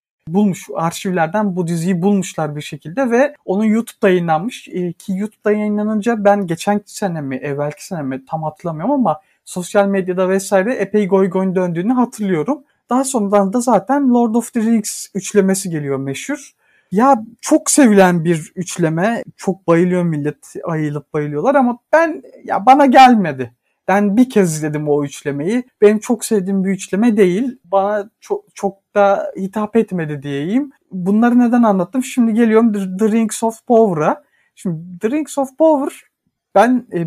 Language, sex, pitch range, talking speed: Turkish, male, 170-220 Hz, 145 wpm